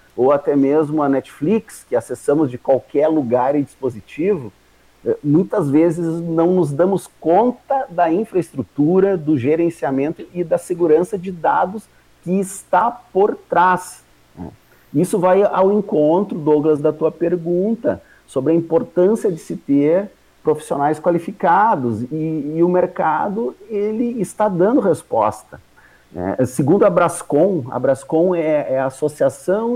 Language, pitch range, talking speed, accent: Portuguese, 150-195 Hz, 125 wpm, Brazilian